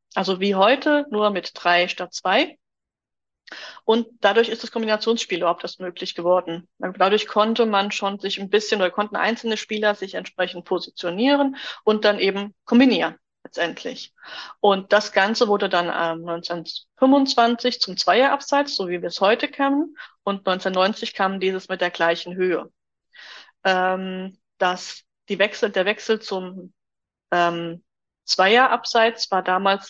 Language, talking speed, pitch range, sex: German, 140 wpm, 180-230 Hz, female